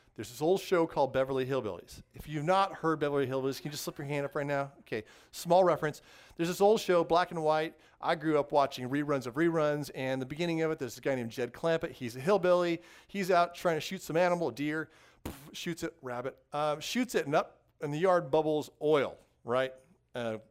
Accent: American